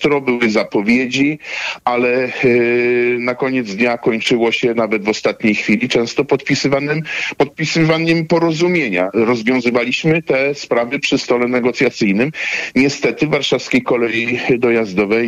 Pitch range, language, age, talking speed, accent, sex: 110-125 Hz, Polish, 50-69, 110 wpm, native, male